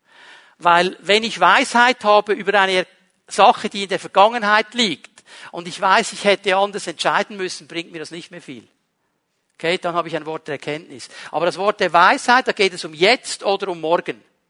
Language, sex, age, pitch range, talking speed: German, male, 50-69, 170-215 Hz, 200 wpm